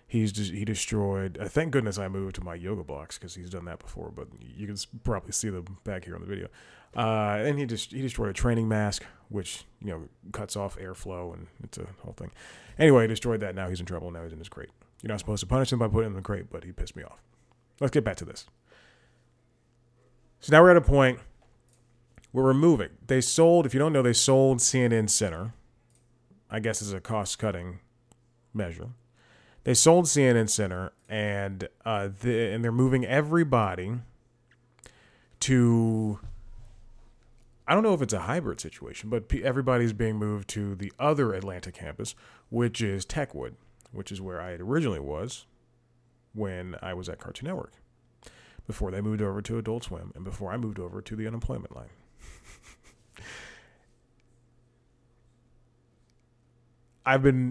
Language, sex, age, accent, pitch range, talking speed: English, male, 30-49, American, 100-120 Hz, 175 wpm